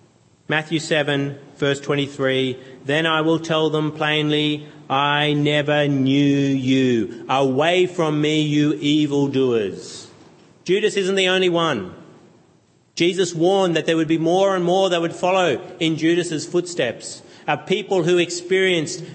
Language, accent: English, Australian